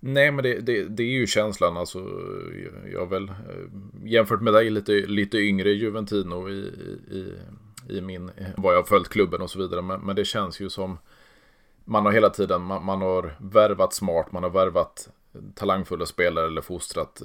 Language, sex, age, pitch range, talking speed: Swedish, male, 30-49, 85-100 Hz, 185 wpm